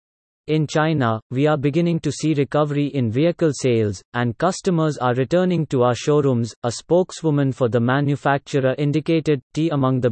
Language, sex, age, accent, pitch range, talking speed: English, male, 30-49, Indian, 125-155 Hz, 160 wpm